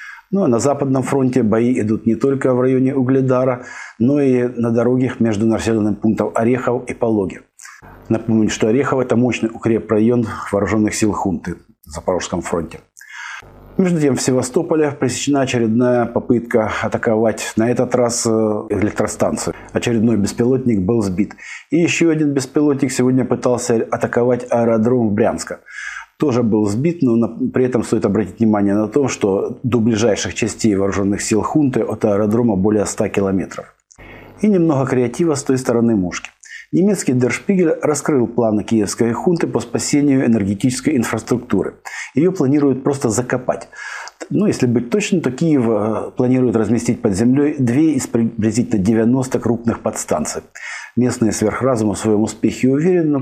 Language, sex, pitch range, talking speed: Russian, male, 110-130 Hz, 145 wpm